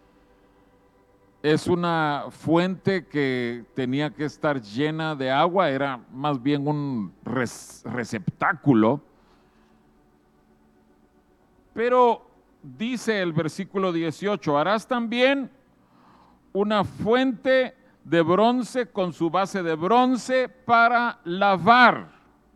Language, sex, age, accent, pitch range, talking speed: Spanish, male, 50-69, Mexican, 150-225 Hz, 90 wpm